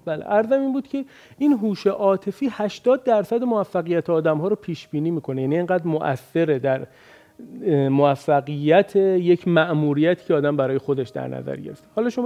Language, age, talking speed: Persian, 40-59, 150 wpm